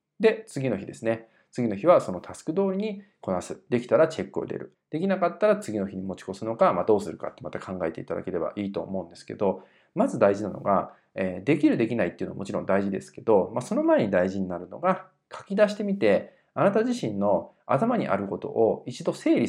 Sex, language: male, Japanese